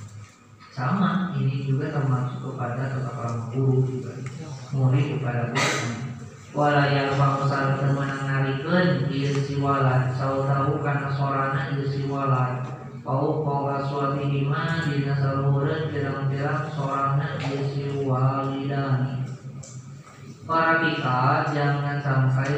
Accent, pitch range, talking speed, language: native, 130-140 Hz, 100 wpm, Indonesian